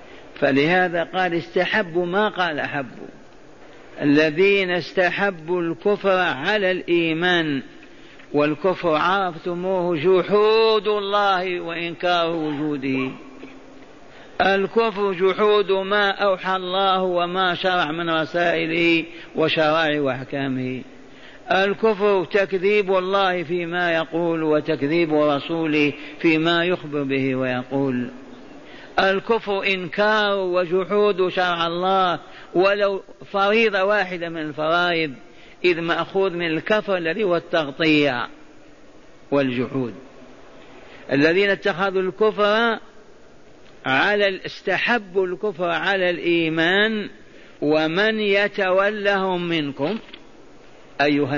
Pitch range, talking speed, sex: 155-195 Hz, 80 wpm, male